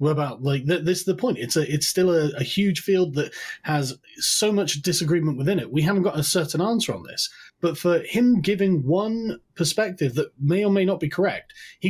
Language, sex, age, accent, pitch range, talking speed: English, male, 30-49, British, 155-200 Hz, 225 wpm